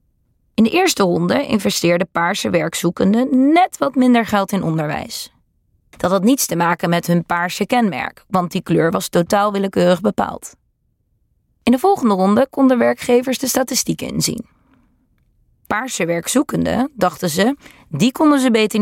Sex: female